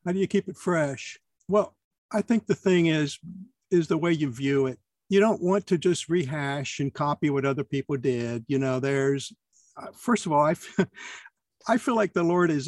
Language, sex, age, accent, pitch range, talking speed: English, male, 60-79, American, 145-195 Hz, 205 wpm